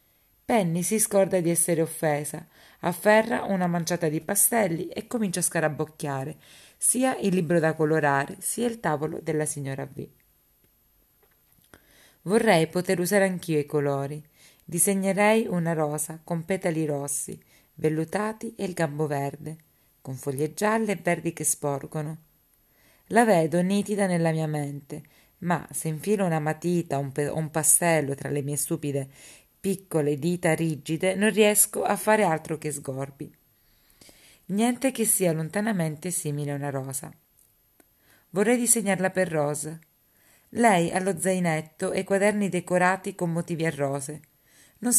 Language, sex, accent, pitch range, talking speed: Italian, female, native, 150-195 Hz, 140 wpm